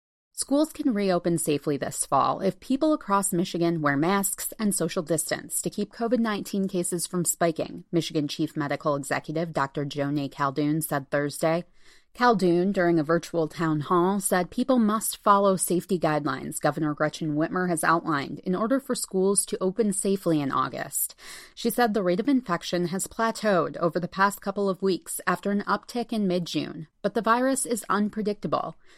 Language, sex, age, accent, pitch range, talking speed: English, female, 30-49, American, 160-215 Hz, 165 wpm